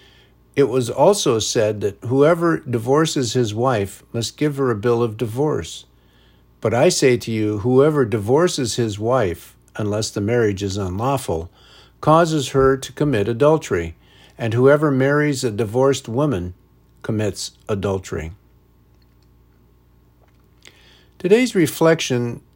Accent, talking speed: American, 120 wpm